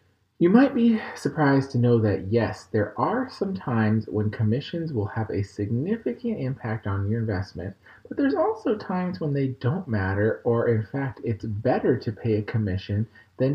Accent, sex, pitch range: American, male, 105-145 Hz